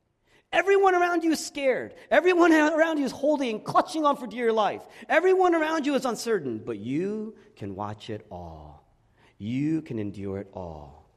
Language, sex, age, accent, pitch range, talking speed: English, male, 40-59, American, 100-145 Hz, 165 wpm